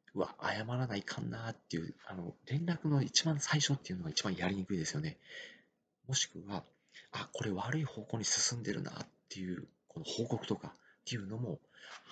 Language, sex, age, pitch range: Japanese, male, 40-59, 105-150 Hz